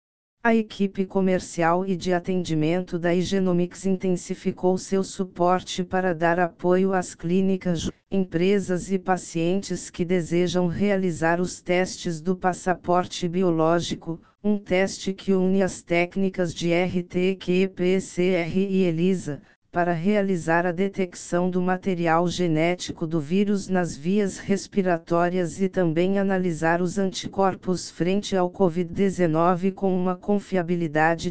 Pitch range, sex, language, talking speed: 175-190 Hz, female, Portuguese, 120 wpm